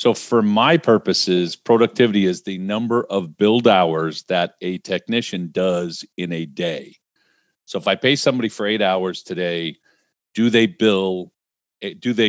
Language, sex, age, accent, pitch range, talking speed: English, male, 50-69, American, 90-115 Hz, 145 wpm